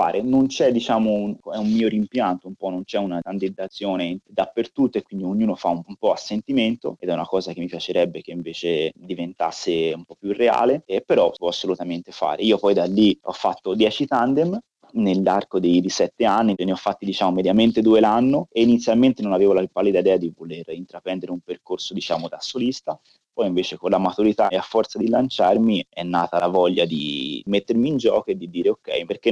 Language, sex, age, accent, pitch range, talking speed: Italian, male, 20-39, native, 90-110 Hz, 210 wpm